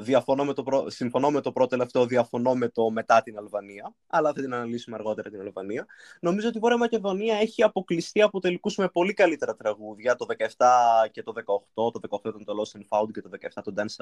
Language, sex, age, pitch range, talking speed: Greek, male, 20-39, 115-170 Hz, 220 wpm